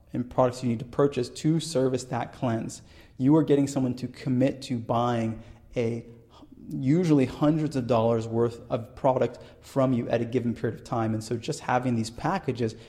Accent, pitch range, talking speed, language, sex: American, 115-130 Hz, 180 wpm, English, male